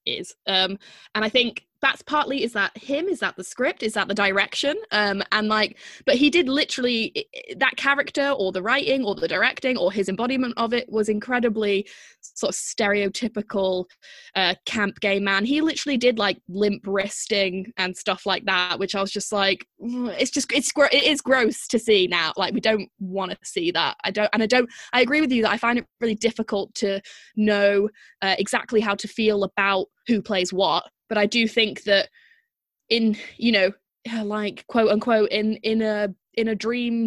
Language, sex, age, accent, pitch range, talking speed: English, female, 20-39, British, 200-240 Hz, 195 wpm